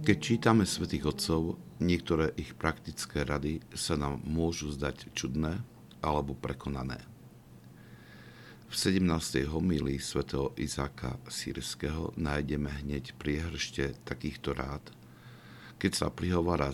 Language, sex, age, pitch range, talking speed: Slovak, male, 60-79, 70-80 Hz, 105 wpm